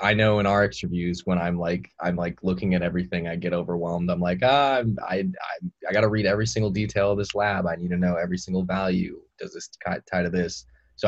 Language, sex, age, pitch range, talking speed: English, male, 20-39, 85-105 Hz, 240 wpm